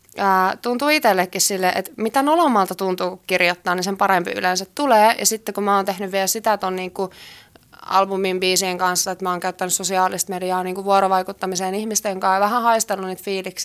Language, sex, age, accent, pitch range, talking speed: Finnish, female, 20-39, native, 190-215 Hz, 180 wpm